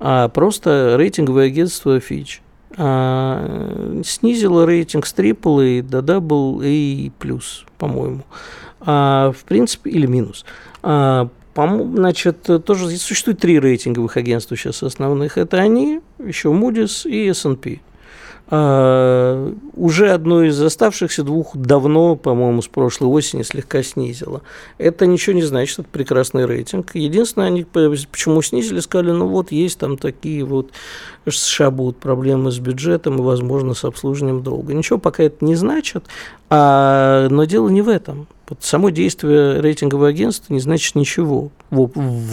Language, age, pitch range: Russian, 50-69, 130-170 Hz